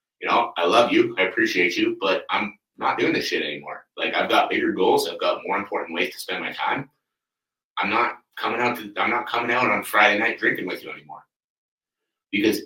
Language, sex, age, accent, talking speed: English, male, 30-49, American, 220 wpm